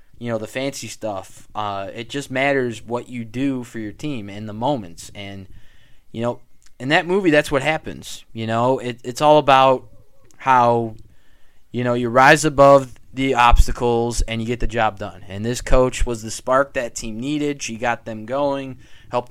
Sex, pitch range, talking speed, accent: male, 110-130 Hz, 185 wpm, American